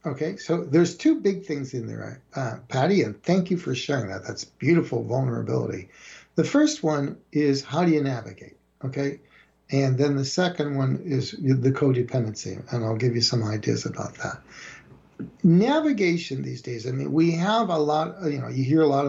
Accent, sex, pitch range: American, male, 130-165 Hz